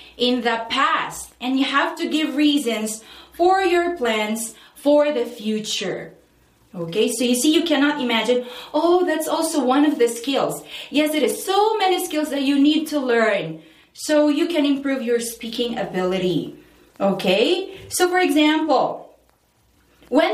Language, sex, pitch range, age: Korean, female, 215-305 Hz, 20-39